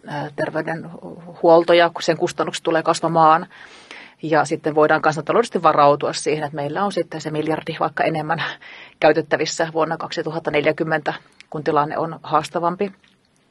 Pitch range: 155-175 Hz